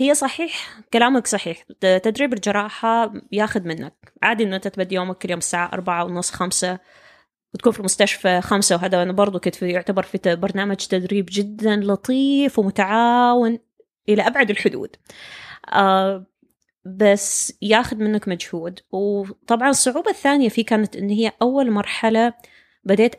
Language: Arabic